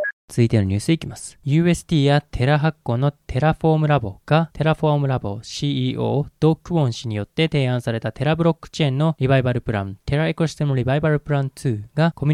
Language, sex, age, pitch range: Japanese, male, 20-39, 120-150 Hz